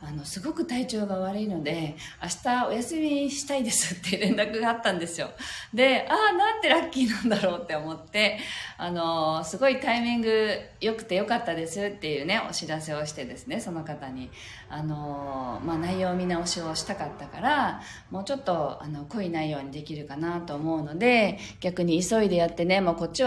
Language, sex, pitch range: Japanese, female, 150-220 Hz